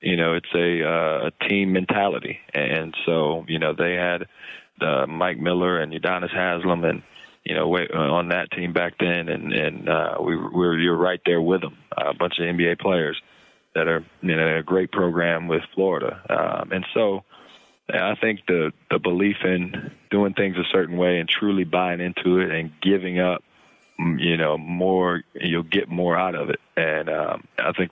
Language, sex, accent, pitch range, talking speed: English, male, American, 85-95 Hz, 195 wpm